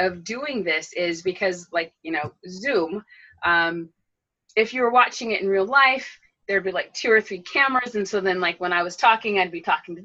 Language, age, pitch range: English, 30-49, 170-220 Hz